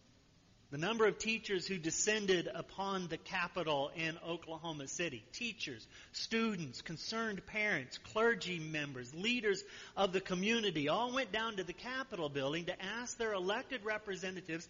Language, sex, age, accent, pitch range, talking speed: English, male, 40-59, American, 150-210 Hz, 140 wpm